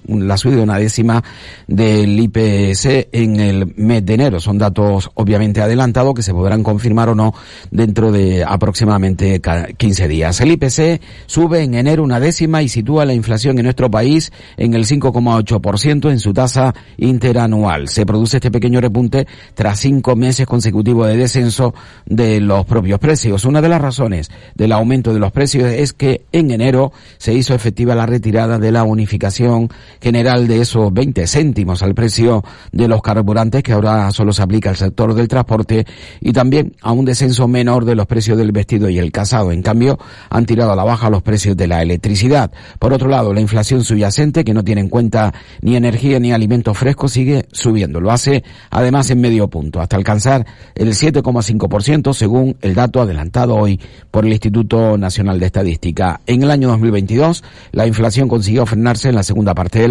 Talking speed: 180 wpm